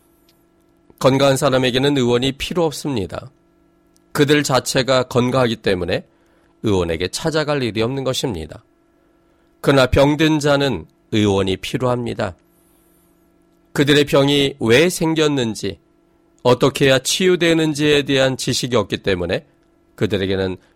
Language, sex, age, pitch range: Korean, male, 40-59, 115-165 Hz